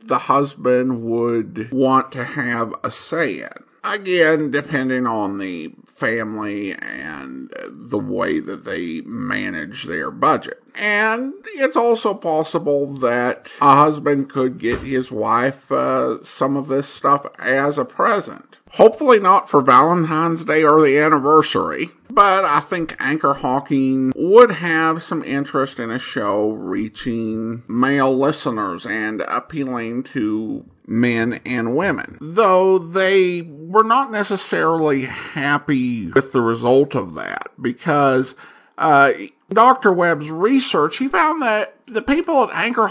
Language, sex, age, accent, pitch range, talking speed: English, male, 50-69, American, 125-190 Hz, 130 wpm